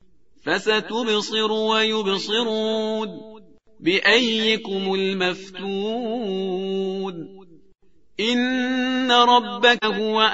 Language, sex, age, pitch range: Persian, male, 40-59, 190-240 Hz